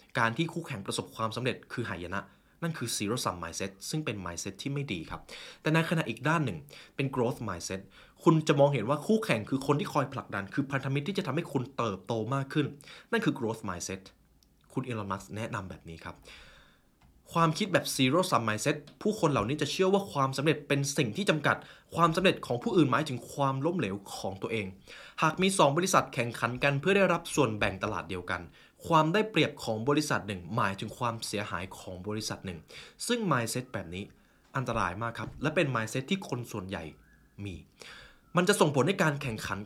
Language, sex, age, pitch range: Thai, male, 20-39, 105-155 Hz